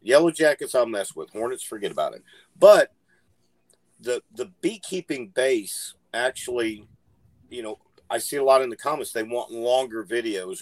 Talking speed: 160 wpm